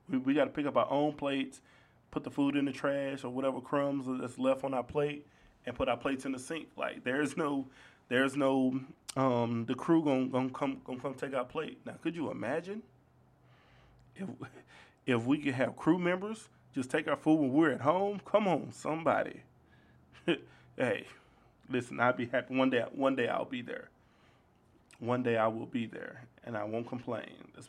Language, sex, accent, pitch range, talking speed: English, male, American, 120-140 Hz, 195 wpm